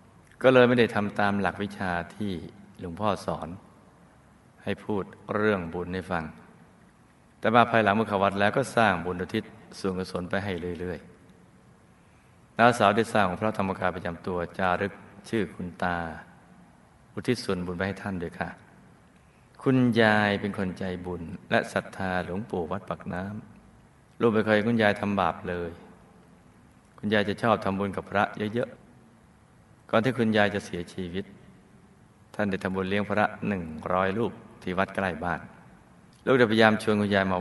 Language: Thai